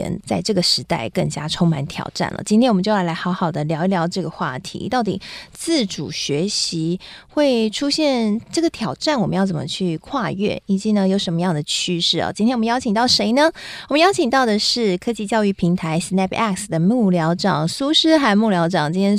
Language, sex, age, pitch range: Chinese, female, 20-39, 170-220 Hz